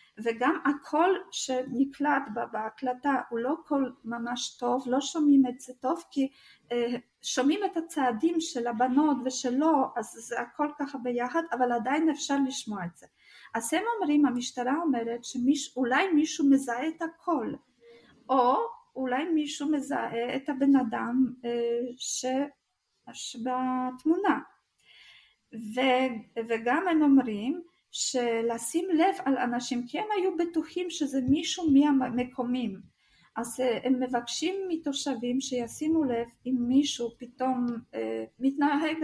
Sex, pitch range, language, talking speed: female, 235-285 Hz, Hebrew, 115 wpm